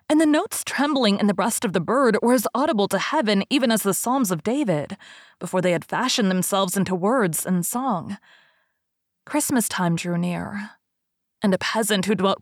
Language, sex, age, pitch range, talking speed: English, female, 20-39, 185-245 Hz, 190 wpm